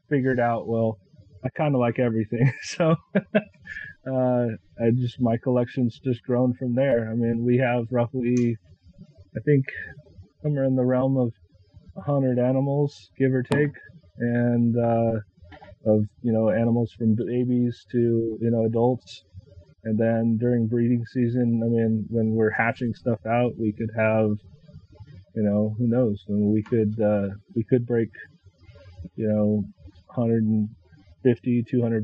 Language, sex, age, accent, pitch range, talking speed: English, male, 30-49, American, 105-120 Hz, 145 wpm